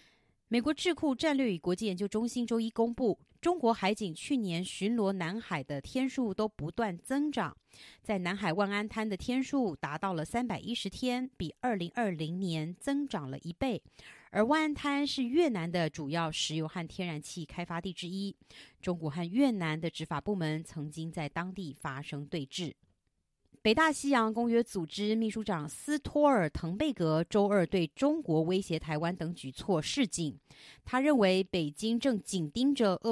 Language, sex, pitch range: Chinese, female, 165-240 Hz